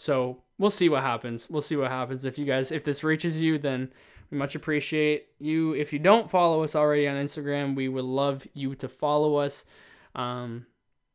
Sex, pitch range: male, 130-150 Hz